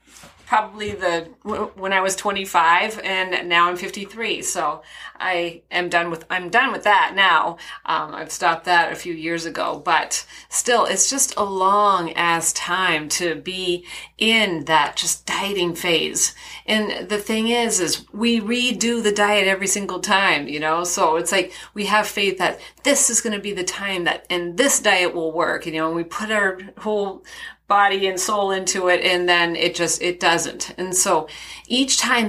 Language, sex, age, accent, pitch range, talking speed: English, female, 30-49, American, 175-210 Hz, 185 wpm